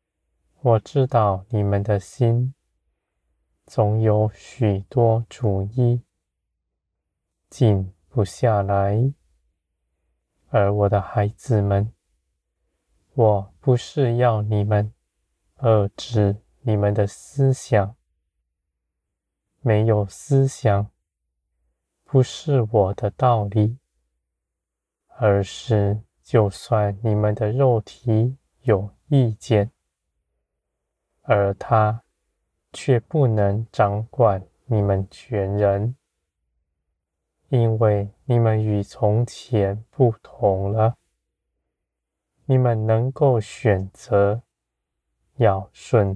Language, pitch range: Chinese, 80-115 Hz